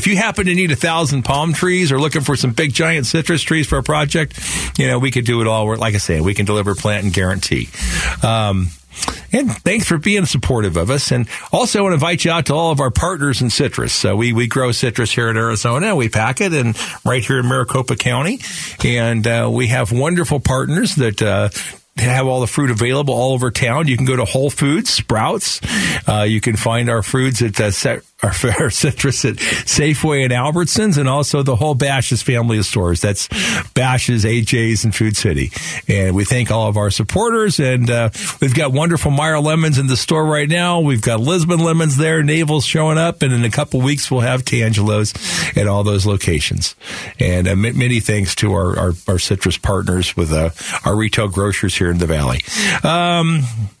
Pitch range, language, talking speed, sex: 105-150 Hz, English, 210 wpm, male